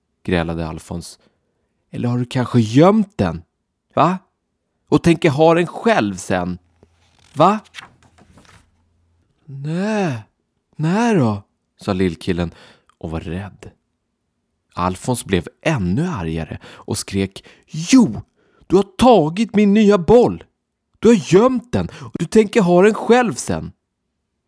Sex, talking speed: male, 120 wpm